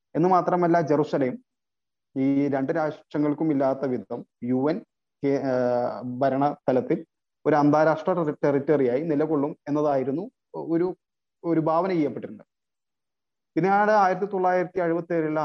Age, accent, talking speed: 30-49, native, 100 wpm